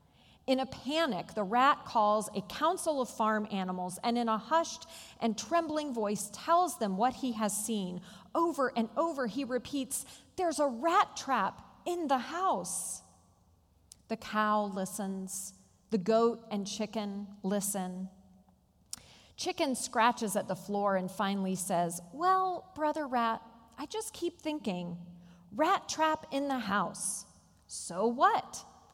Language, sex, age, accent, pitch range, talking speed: English, female, 40-59, American, 190-270 Hz, 135 wpm